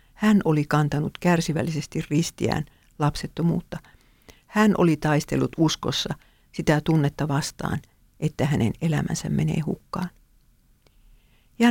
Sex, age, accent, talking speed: female, 50-69, Finnish, 95 wpm